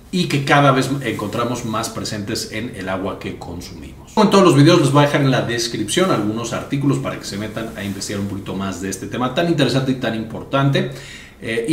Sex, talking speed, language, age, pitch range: male, 225 wpm, Spanish, 40-59, 100-135 Hz